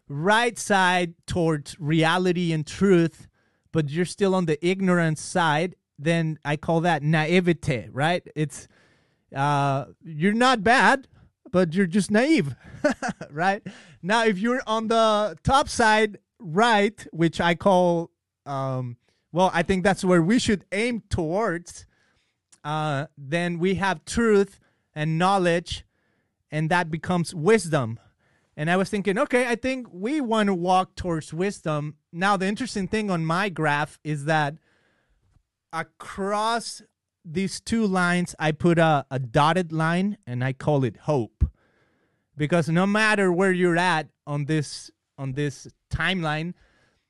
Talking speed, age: 140 wpm, 30-49